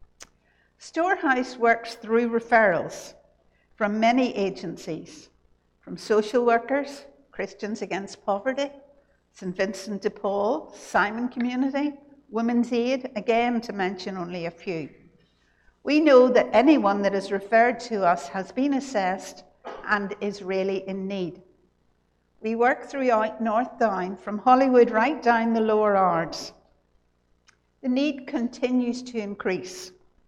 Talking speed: 120 wpm